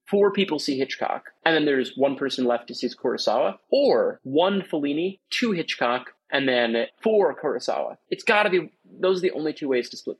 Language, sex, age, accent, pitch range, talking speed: English, male, 20-39, American, 135-220 Hz, 195 wpm